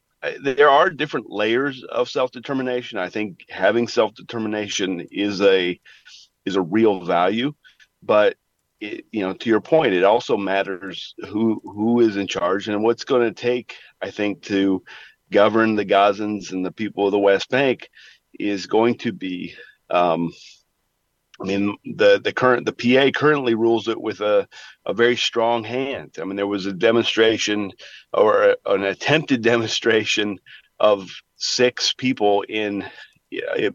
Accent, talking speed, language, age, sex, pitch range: American, 155 wpm, English, 40-59, male, 100-125 Hz